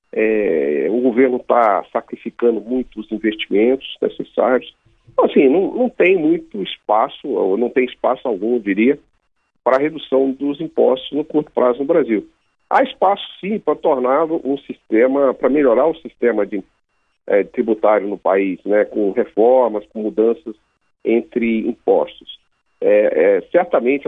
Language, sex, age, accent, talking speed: Portuguese, male, 50-69, Brazilian, 145 wpm